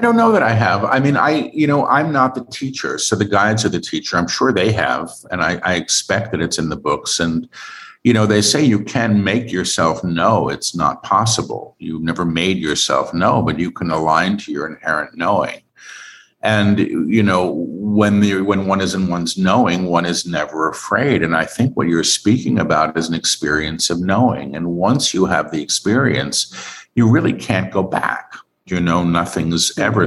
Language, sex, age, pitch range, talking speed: English, male, 50-69, 85-120 Hz, 205 wpm